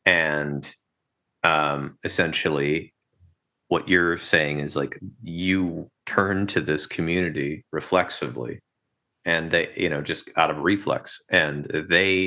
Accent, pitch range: American, 75-90 Hz